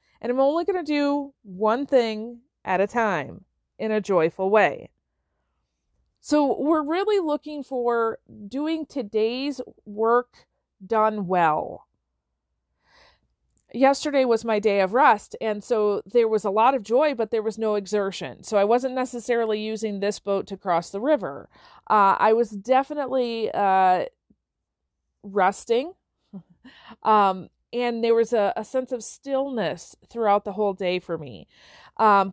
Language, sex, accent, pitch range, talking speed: English, female, American, 200-265 Hz, 145 wpm